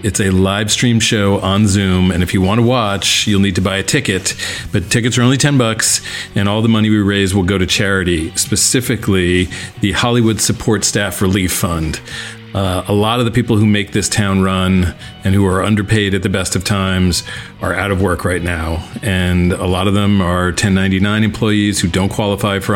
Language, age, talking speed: English, 40-59, 210 wpm